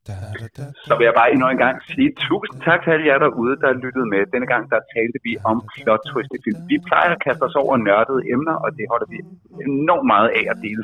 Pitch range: 115-170 Hz